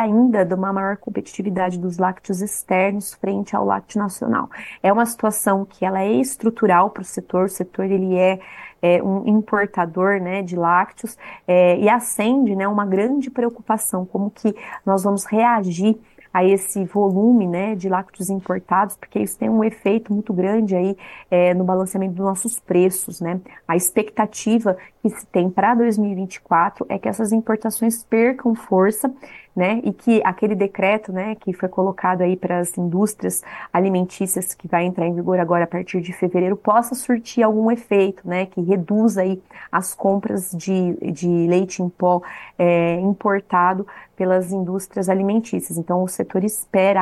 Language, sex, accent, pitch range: Portuguese, female, Brazilian, 185-220 Hz